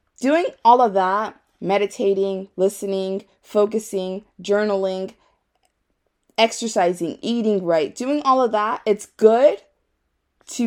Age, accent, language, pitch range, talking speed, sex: 20-39, American, English, 175-230 Hz, 100 wpm, female